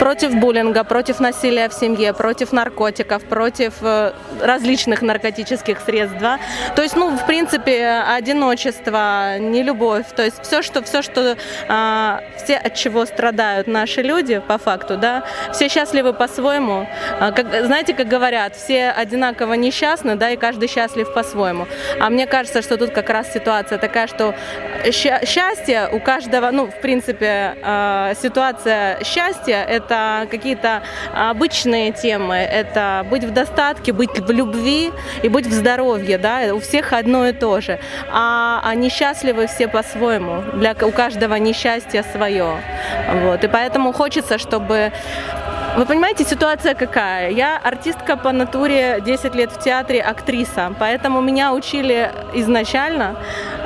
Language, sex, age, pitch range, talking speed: Russian, female, 20-39, 220-260 Hz, 135 wpm